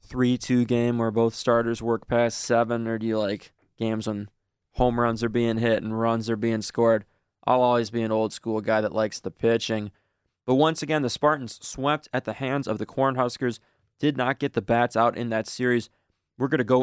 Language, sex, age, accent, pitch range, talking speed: English, male, 20-39, American, 110-130 Hz, 205 wpm